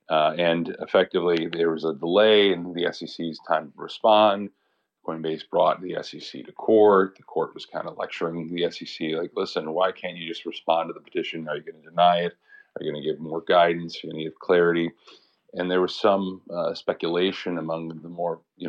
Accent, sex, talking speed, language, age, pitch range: American, male, 200 wpm, English, 40-59, 80-95 Hz